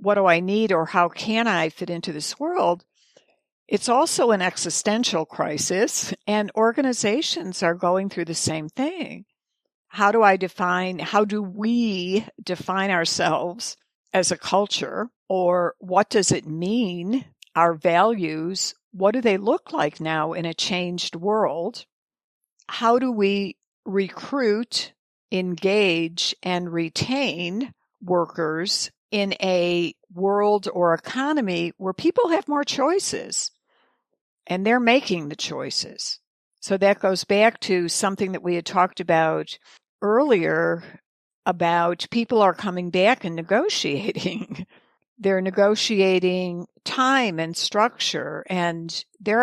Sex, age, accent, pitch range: female, 60-79, American, 175-215 Hz